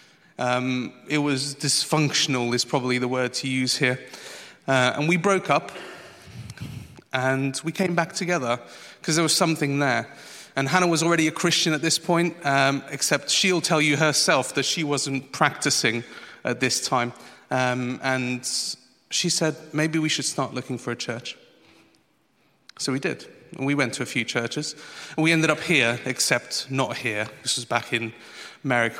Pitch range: 130-165 Hz